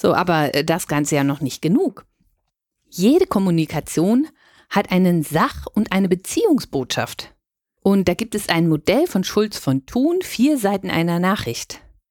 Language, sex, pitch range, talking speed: German, female, 150-210 Hz, 150 wpm